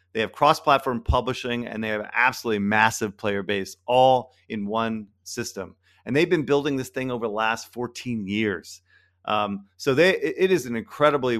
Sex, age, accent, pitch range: male, 40-59, American, 100-130 Hz